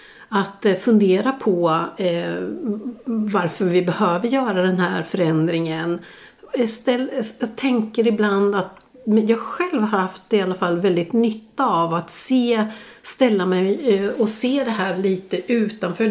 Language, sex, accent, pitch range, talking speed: Swedish, female, native, 185-235 Hz, 140 wpm